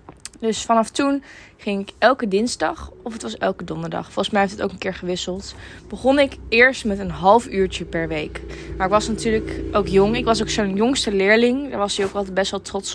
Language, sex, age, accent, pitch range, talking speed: Dutch, female, 20-39, Dutch, 190-230 Hz, 225 wpm